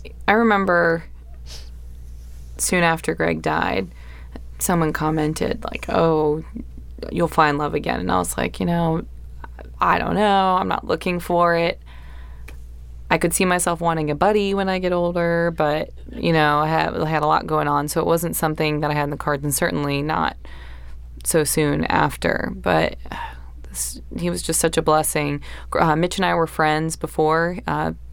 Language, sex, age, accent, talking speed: English, female, 20-39, American, 170 wpm